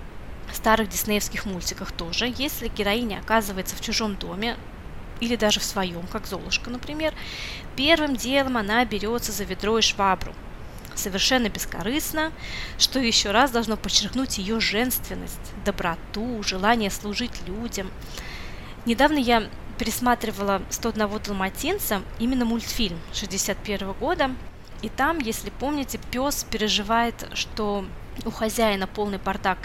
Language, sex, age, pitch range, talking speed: Russian, female, 20-39, 200-245 Hz, 115 wpm